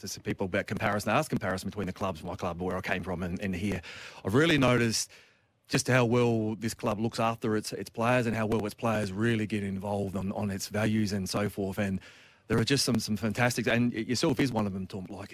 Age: 30-49